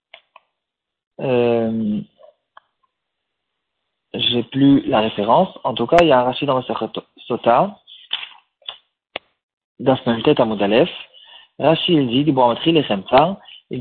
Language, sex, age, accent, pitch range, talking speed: French, male, 40-59, French, 125-170 Hz, 110 wpm